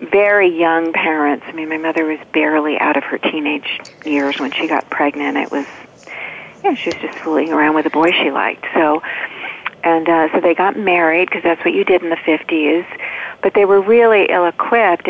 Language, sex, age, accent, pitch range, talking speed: English, female, 40-59, American, 155-190 Hz, 205 wpm